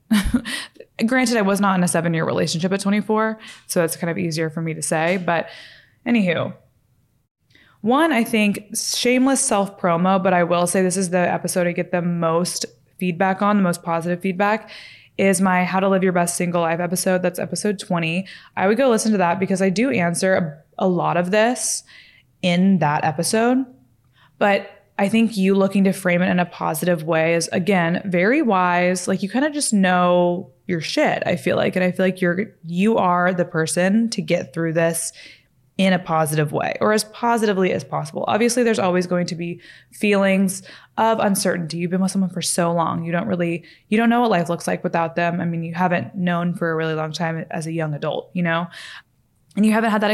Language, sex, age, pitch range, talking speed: English, female, 20-39, 170-205 Hz, 205 wpm